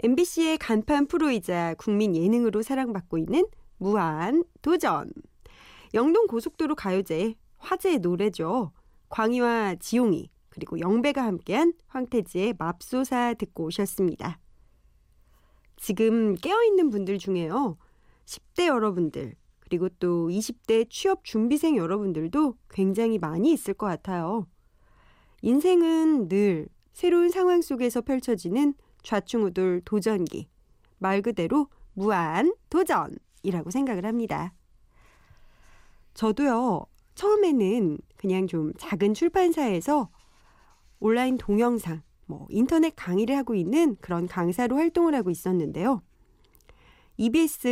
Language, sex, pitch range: Korean, female, 185-280 Hz